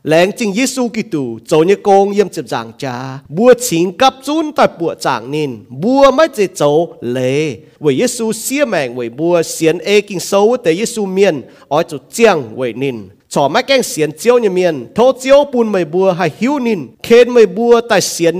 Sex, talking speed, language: male, 200 wpm, French